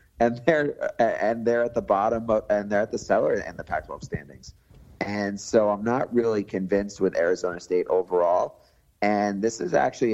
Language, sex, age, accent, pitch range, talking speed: English, male, 30-49, American, 90-110 Hz, 185 wpm